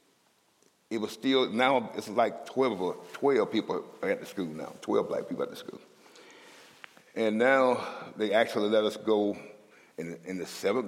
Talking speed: 180 wpm